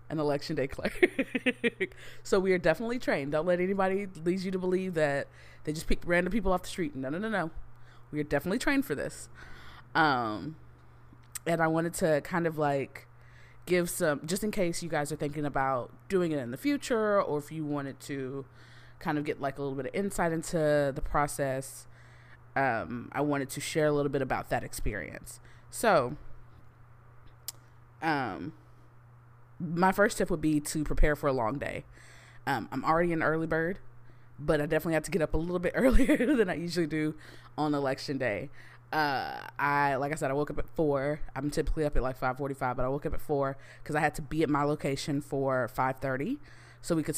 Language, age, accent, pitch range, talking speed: English, 20-39, American, 130-160 Hz, 205 wpm